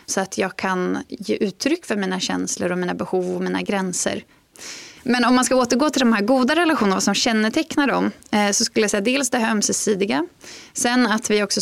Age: 20-39